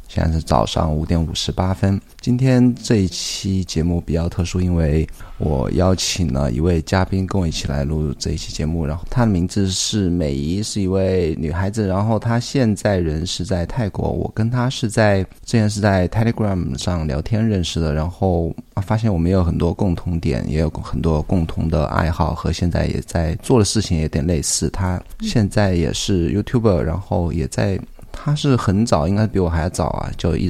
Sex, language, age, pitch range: male, Chinese, 20-39, 80-105 Hz